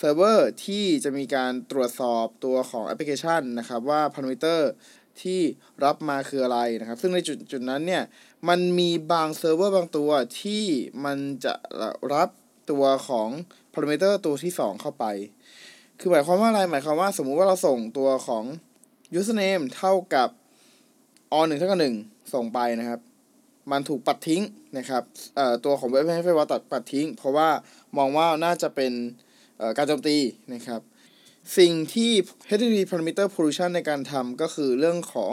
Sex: male